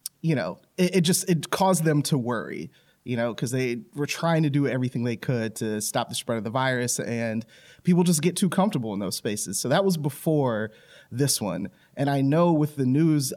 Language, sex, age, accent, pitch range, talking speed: English, male, 30-49, American, 125-160 Hz, 220 wpm